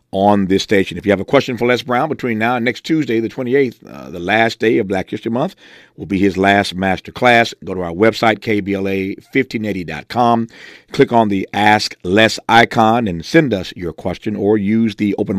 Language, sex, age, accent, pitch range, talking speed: English, male, 50-69, American, 95-110 Hz, 205 wpm